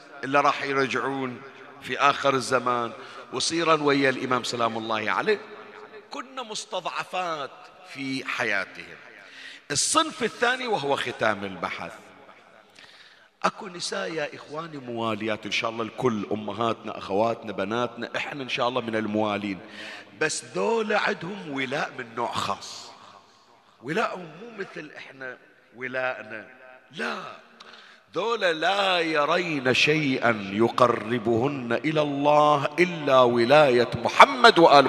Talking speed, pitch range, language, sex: 110 wpm, 115-160 Hz, Arabic, male